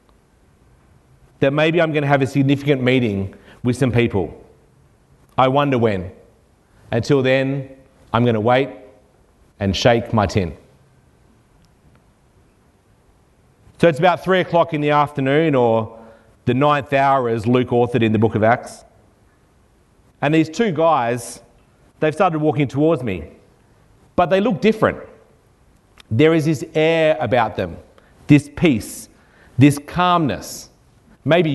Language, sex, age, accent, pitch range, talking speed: English, male, 40-59, Australian, 115-150 Hz, 130 wpm